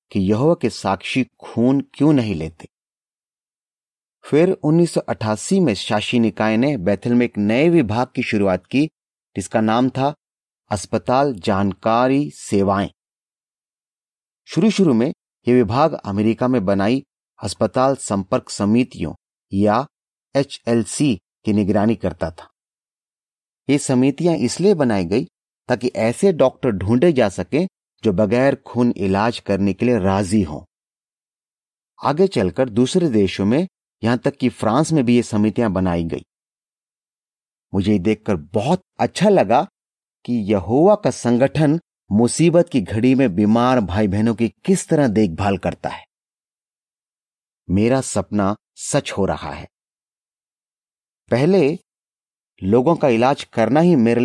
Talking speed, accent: 125 wpm, native